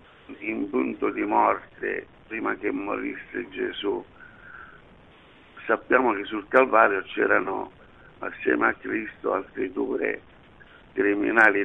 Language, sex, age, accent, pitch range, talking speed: Italian, male, 60-79, native, 320-400 Hz, 100 wpm